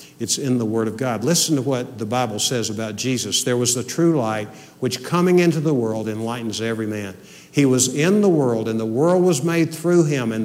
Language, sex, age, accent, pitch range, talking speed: English, male, 60-79, American, 110-165 Hz, 230 wpm